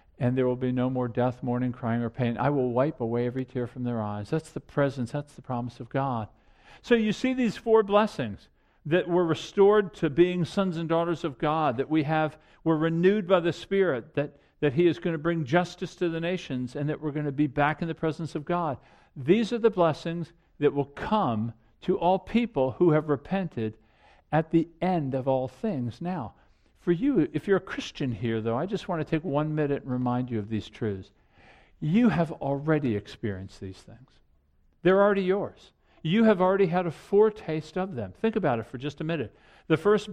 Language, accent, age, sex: English, American, 50-69, male